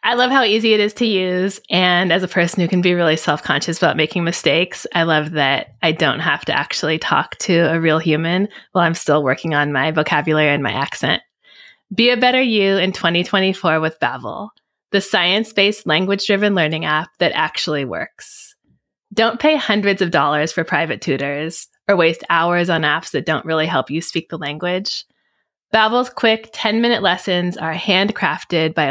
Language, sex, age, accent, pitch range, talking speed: English, female, 20-39, American, 160-210 Hz, 180 wpm